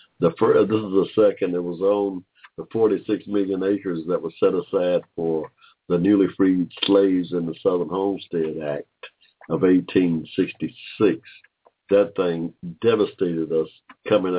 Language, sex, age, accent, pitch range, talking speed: English, male, 60-79, American, 80-90 Hz, 140 wpm